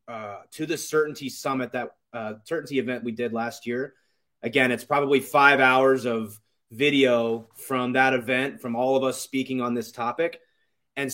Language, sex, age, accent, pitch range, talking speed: English, male, 30-49, American, 120-155 Hz, 170 wpm